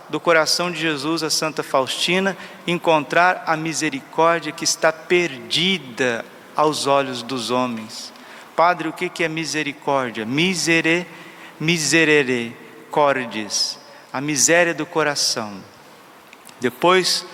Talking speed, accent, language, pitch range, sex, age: 105 wpm, Brazilian, Portuguese, 130-165 Hz, male, 40-59